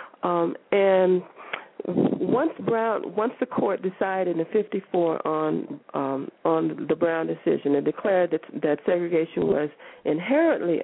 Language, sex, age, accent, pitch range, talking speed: English, female, 40-59, American, 180-250 Hz, 125 wpm